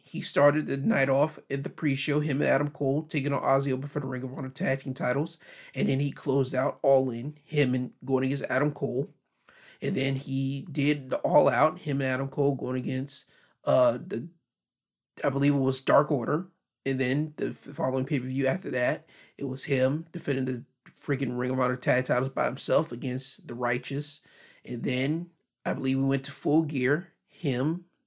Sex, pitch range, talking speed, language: male, 130-150 Hz, 190 wpm, English